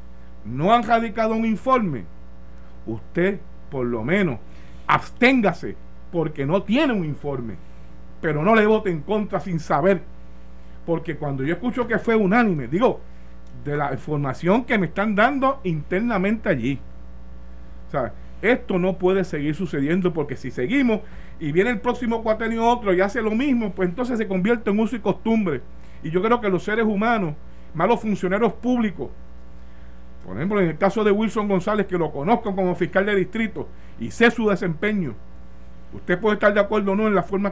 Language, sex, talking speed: Spanish, male, 175 wpm